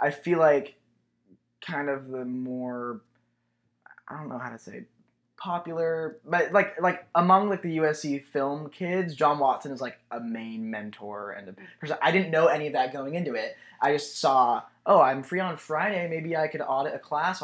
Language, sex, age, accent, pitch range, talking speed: English, male, 20-39, American, 120-170 Hz, 195 wpm